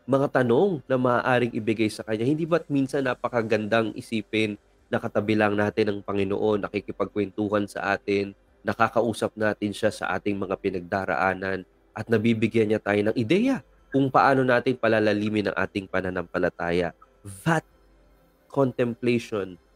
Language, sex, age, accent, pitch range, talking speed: Filipino, male, 20-39, native, 105-145 Hz, 130 wpm